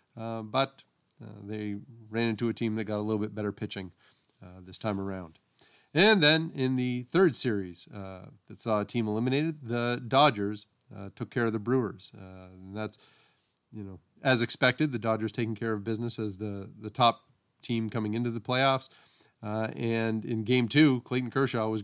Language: English